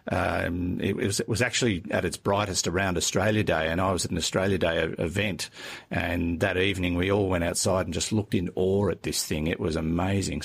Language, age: English, 50-69